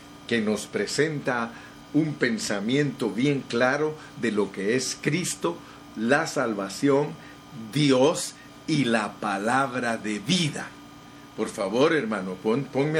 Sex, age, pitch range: male, 50-69, 120-160 Hz